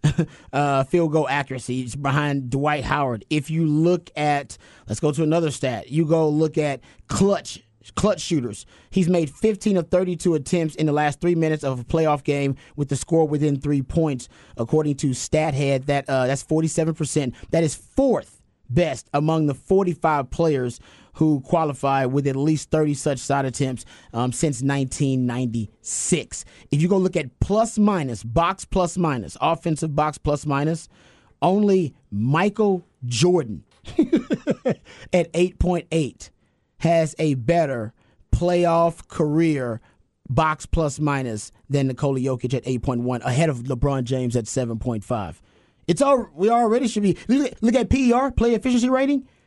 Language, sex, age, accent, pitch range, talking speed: English, male, 30-49, American, 130-170 Hz, 150 wpm